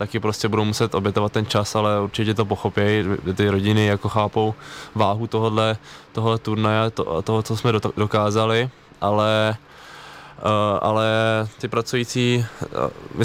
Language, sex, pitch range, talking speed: Czech, male, 105-115 Hz, 125 wpm